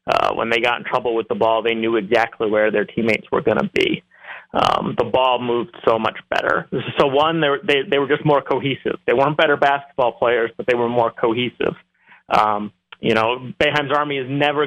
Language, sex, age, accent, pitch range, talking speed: English, male, 30-49, American, 125-150 Hz, 215 wpm